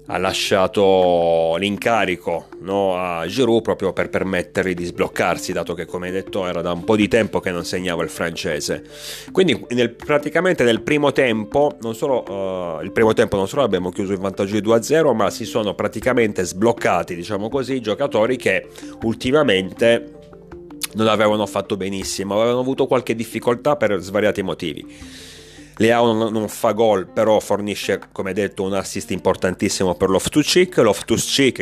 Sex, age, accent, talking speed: male, 30-49, native, 150 wpm